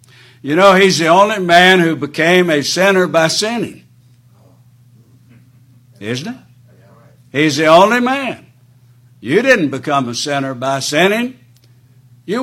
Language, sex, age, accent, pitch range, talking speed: English, male, 60-79, American, 125-170 Hz, 125 wpm